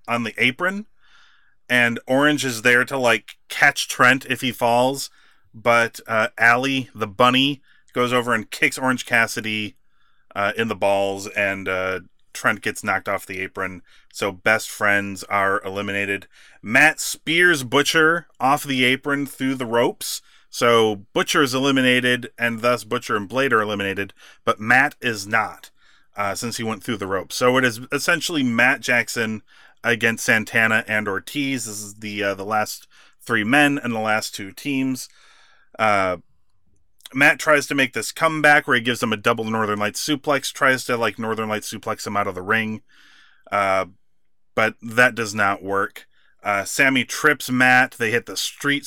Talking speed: 170 wpm